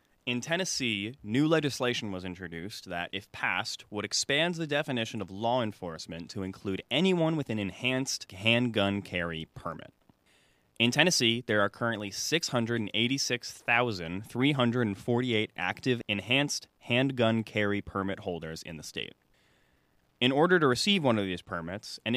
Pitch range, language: 100-135 Hz, English